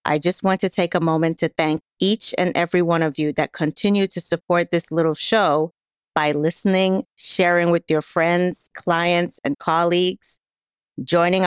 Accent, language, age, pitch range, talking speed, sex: American, English, 30-49, 160-185 Hz, 165 wpm, female